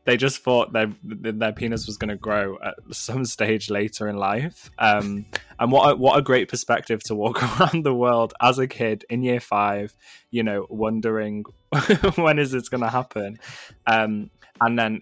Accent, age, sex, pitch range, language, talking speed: British, 20-39, male, 100-115 Hz, English, 190 wpm